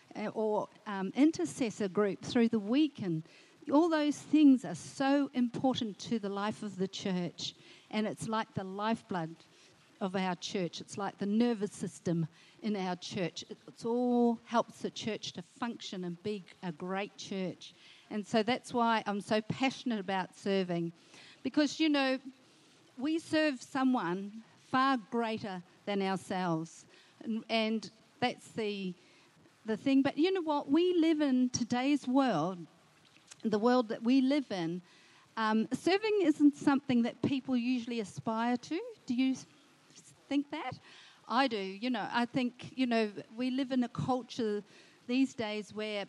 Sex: female